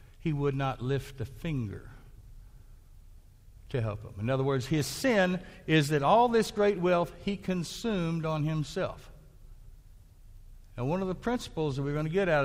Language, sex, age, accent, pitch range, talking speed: English, male, 60-79, American, 105-150 Hz, 170 wpm